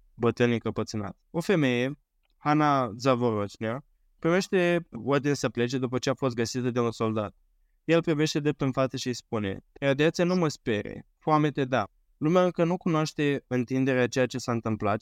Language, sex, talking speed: Romanian, male, 170 wpm